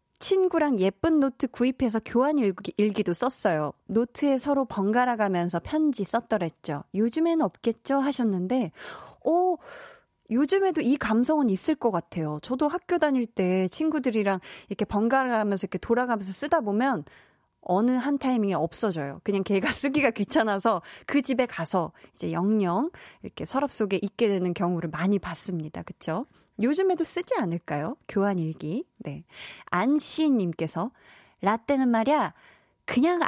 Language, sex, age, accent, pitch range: Korean, female, 20-39, native, 195-275 Hz